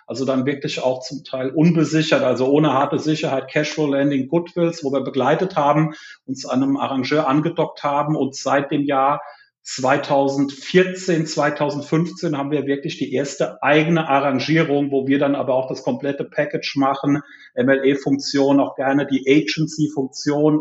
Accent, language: German, German